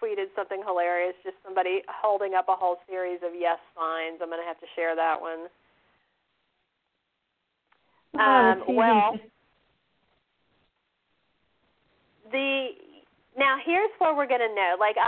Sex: female